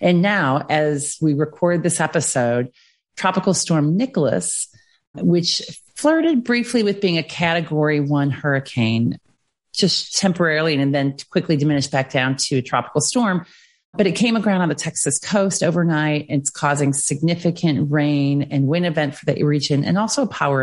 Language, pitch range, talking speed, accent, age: English, 140-175 Hz, 155 wpm, American, 40-59